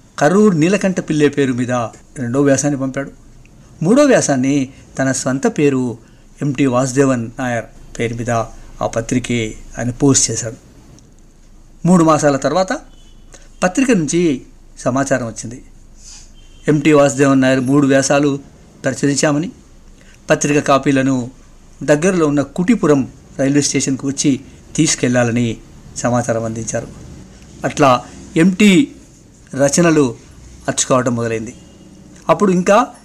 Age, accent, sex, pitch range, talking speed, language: 60-79, native, male, 120-155 Hz, 100 wpm, Telugu